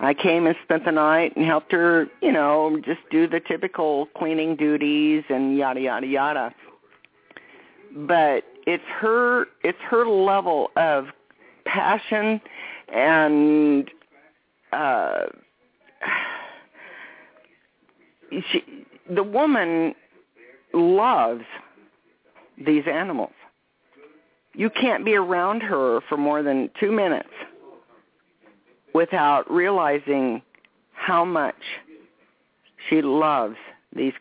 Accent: American